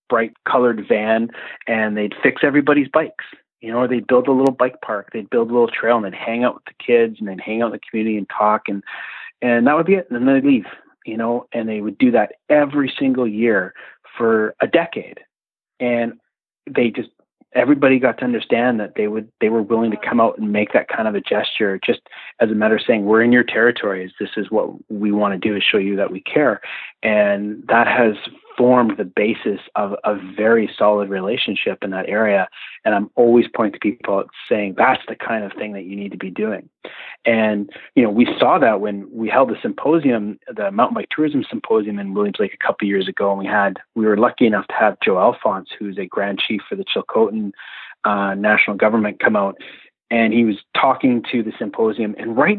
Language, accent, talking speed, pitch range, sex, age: English, American, 220 wpm, 105-125 Hz, male, 30-49